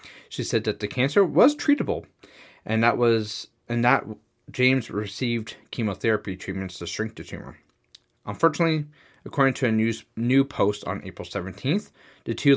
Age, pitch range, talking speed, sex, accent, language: 30-49, 95-125 Hz, 155 wpm, male, American, English